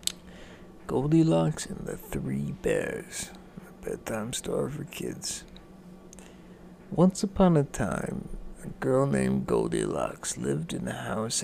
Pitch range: 125-180 Hz